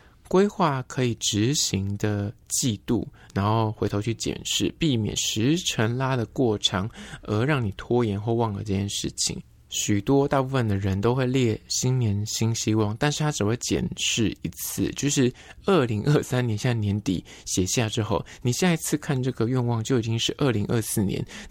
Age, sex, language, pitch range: 20-39, male, Chinese, 105-140 Hz